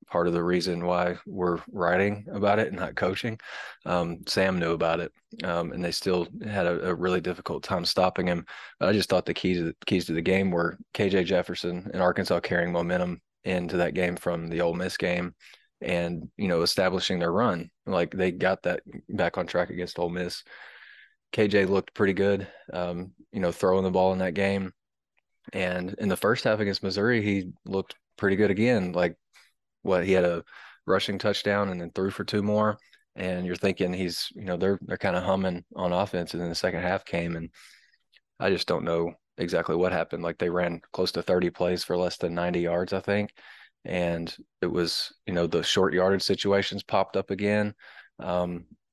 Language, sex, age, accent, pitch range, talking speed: English, male, 20-39, American, 85-95 Hz, 200 wpm